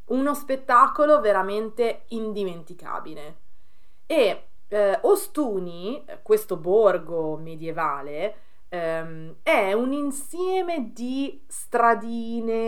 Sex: female